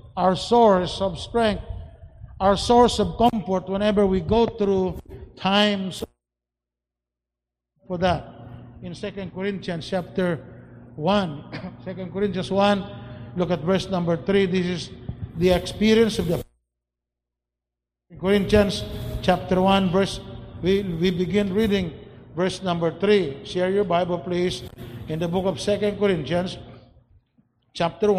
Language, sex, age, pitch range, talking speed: English, male, 60-79, 140-200 Hz, 120 wpm